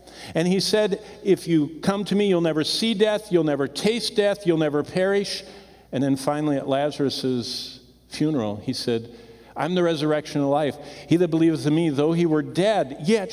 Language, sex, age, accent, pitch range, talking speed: English, male, 50-69, American, 110-170 Hz, 190 wpm